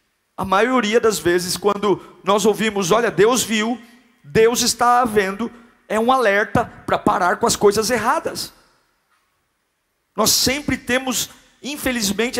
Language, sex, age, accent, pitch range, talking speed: Portuguese, male, 50-69, Brazilian, 205-250 Hz, 125 wpm